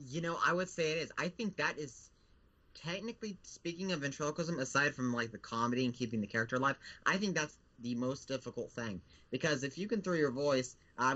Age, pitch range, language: 30-49, 120-155 Hz, English